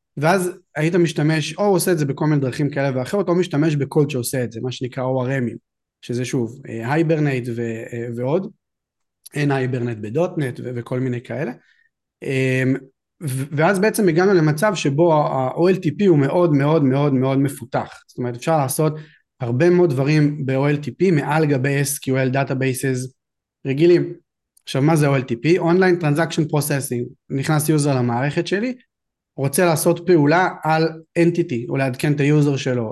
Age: 30-49